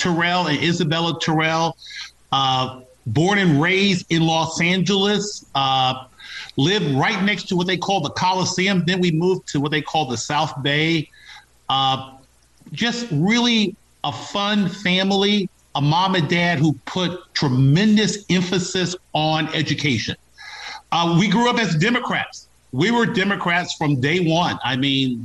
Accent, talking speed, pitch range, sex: American, 145 wpm, 135-180 Hz, male